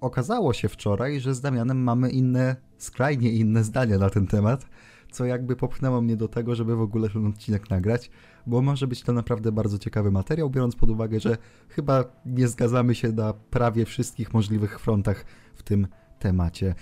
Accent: native